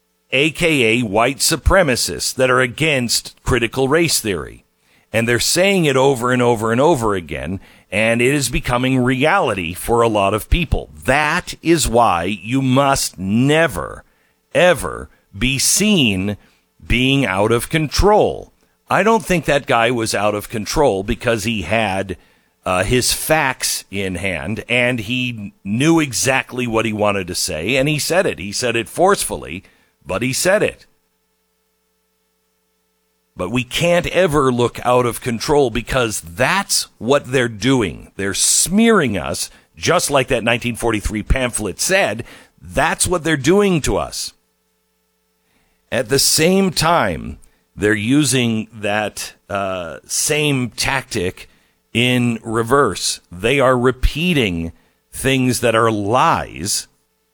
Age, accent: 50-69, American